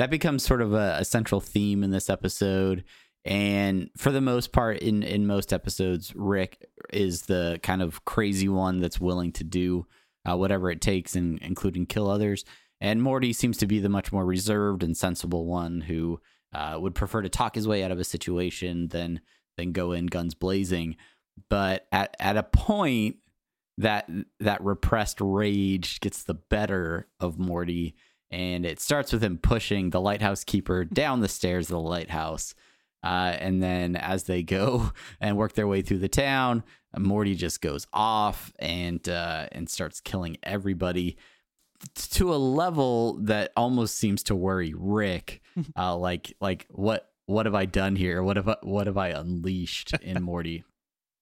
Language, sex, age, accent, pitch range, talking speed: English, male, 30-49, American, 90-105 Hz, 175 wpm